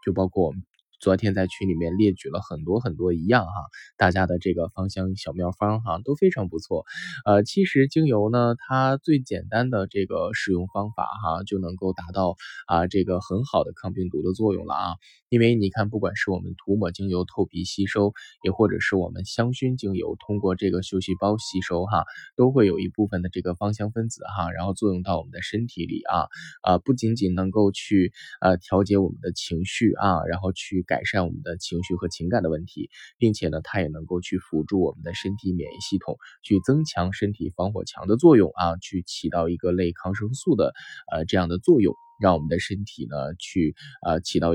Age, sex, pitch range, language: 10-29, male, 90-110 Hz, Chinese